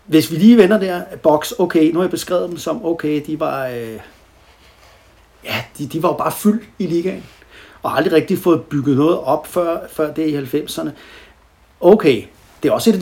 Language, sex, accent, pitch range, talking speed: Danish, male, native, 125-165 Hz, 205 wpm